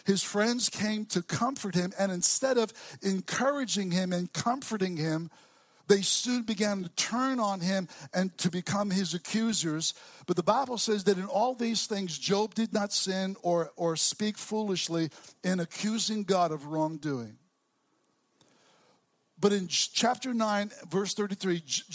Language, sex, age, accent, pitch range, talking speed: English, male, 60-79, American, 185-230 Hz, 150 wpm